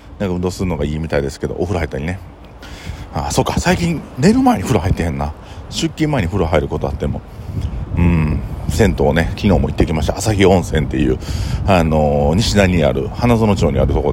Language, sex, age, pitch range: Japanese, male, 40-59, 80-100 Hz